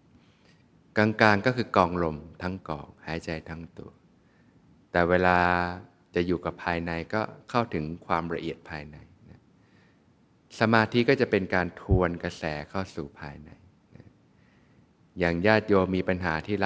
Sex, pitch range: male, 85-100 Hz